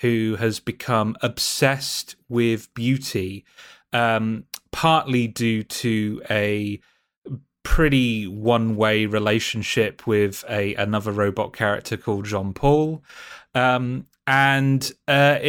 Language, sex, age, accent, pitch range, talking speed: English, male, 30-49, British, 100-125 Hz, 95 wpm